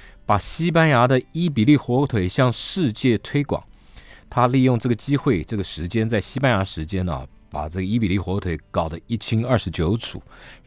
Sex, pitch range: male, 95-140 Hz